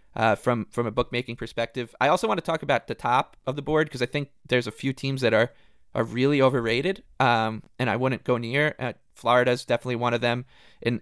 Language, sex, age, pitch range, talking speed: English, male, 20-39, 115-130 Hz, 235 wpm